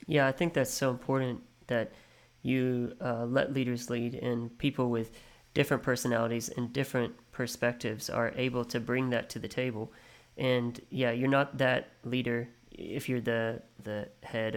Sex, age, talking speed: male, 20-39, 160 wpm